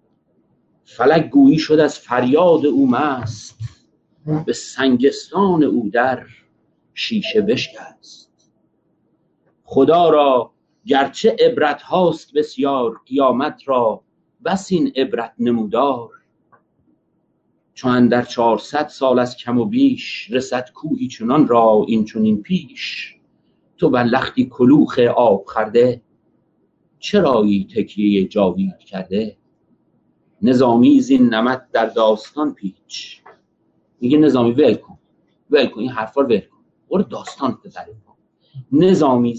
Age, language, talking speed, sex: 50-69, Persian, 105 wpm, male